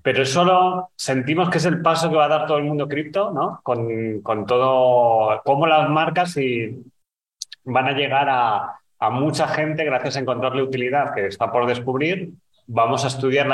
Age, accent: 30-49, Spanish